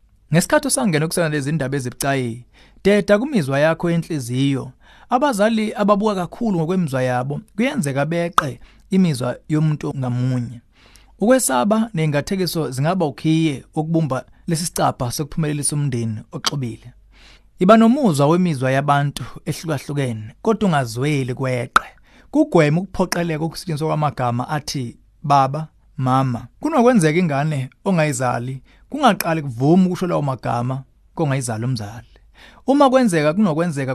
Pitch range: 130-185 Hz